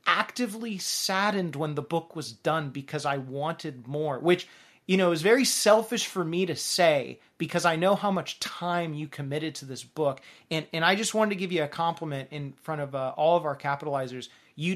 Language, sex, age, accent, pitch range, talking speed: English, male, 30-49, American, 145-185 Hz, 205 wpm